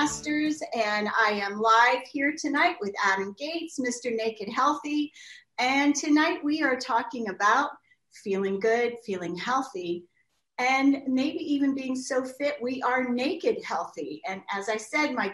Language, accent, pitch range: English, American, 210-290 Hz